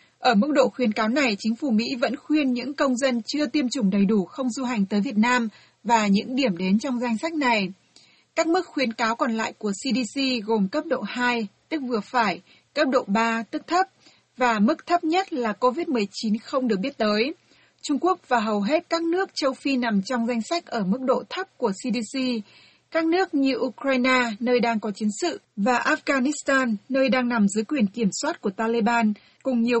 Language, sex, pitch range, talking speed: Vietnamese, female, 225-285 Hz, 210 wpm